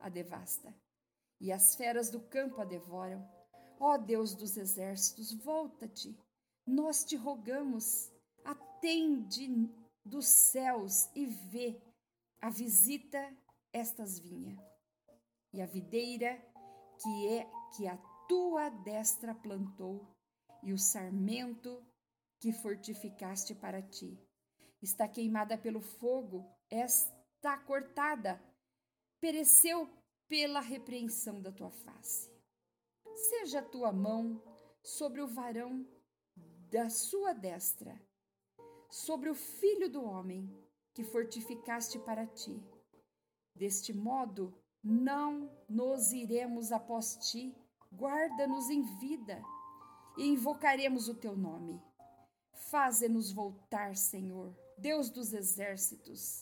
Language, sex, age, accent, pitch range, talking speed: Portuguese, female, 50-69, Brazilian, 200-275 Hz, 105 wpm